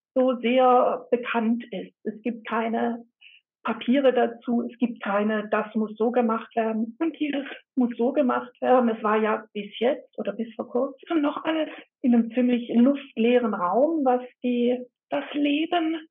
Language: German